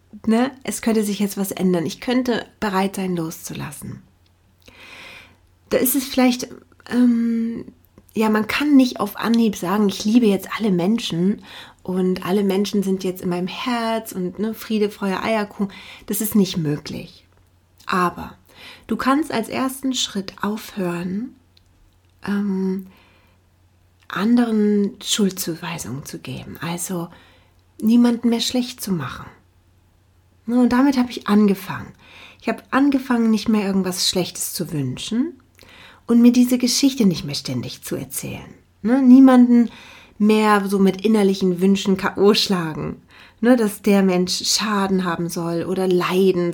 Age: 30-49